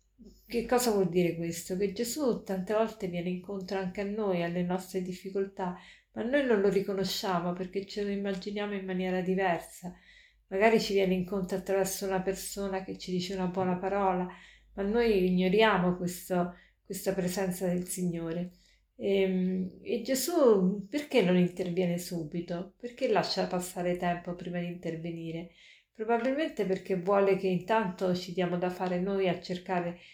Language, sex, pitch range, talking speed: Italian, female, 180-210 Hz, 150 wpm